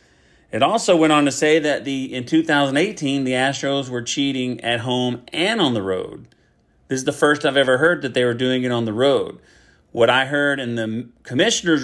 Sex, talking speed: male, 210 wpm